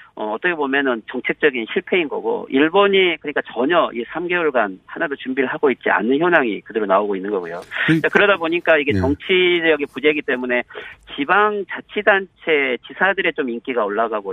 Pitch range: 120-165 Hz